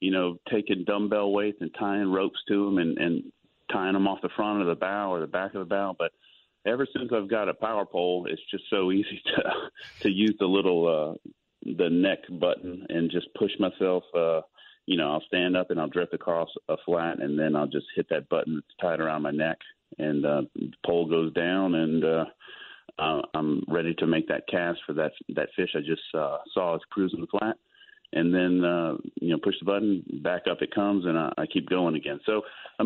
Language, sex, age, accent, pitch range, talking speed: English, male, 40-59, American, 85-100 Hz, 220 wpm